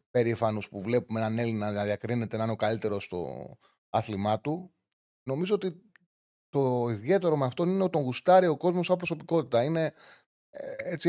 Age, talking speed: 30-49, 160 wpm